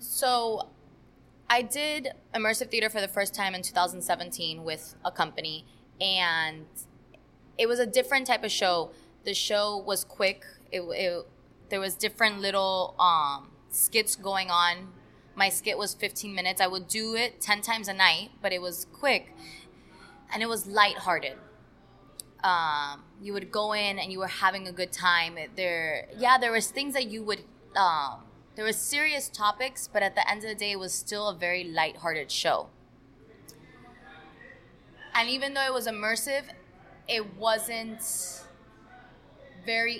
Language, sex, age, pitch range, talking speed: English, female, 20-39, 190-230 Hz, 160 wpm